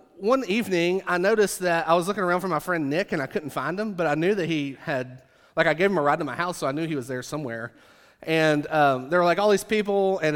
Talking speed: 285 wpm